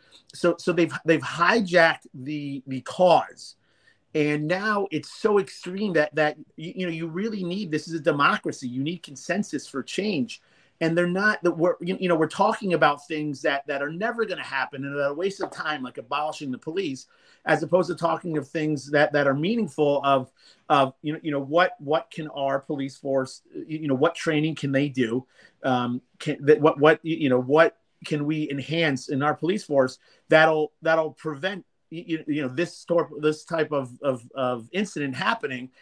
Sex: male